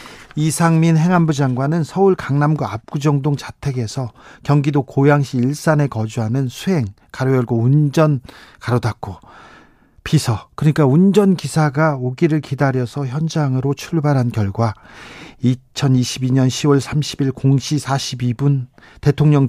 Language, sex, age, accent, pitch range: Korean, male, 40-59, native, 120-155 Hz